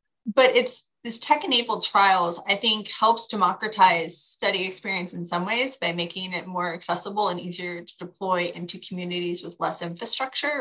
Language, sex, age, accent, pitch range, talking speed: English, female, 20-39, American, 175-215 Hz, 165 wpm